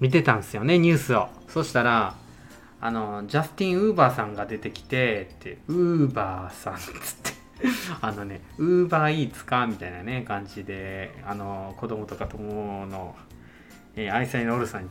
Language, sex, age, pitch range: Japanese, male, 20-39, 105-160 Hz